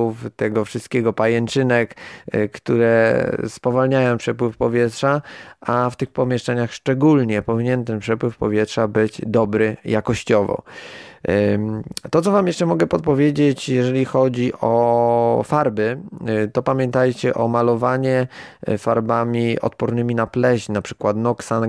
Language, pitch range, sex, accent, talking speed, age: Polish, 110-125 Hz, male, native, 110 wpm, 20-39